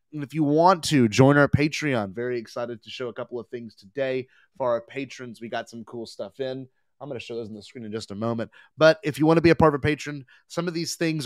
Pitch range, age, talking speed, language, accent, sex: 120-145 Hz, 30-49, 280 wpm, English, American, male